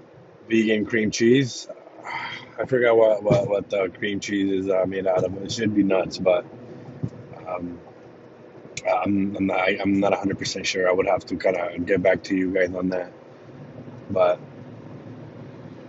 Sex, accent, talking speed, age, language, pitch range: male, American, 160 wpm, 30-49, English, 100-125 Hz